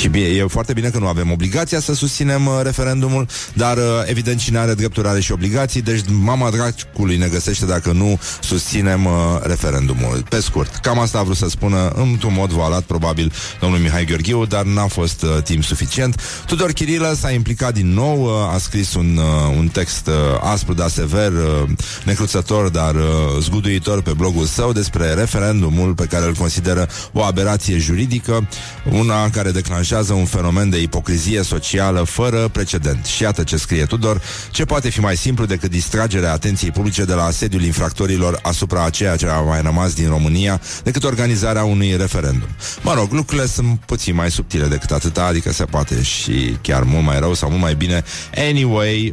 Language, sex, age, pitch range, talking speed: Romanian, male, 30-49, 85-115 Hz, 180 wpm